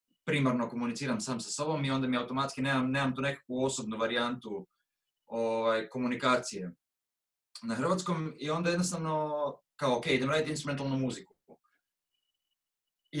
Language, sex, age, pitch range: Croatian, male, 20-39, 130-175 Hz